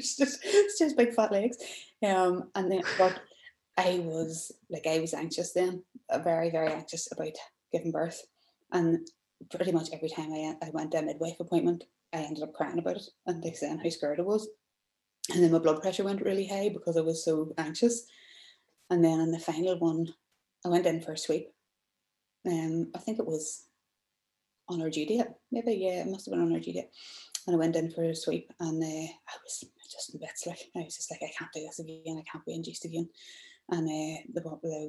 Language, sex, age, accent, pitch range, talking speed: English, female, 20-39, Irish, 160-180 Hz, 220 wpm